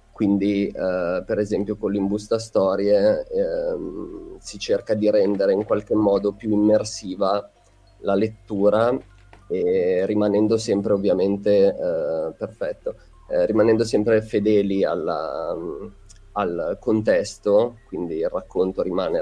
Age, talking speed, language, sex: 20-39, 110 wpm, Italian, male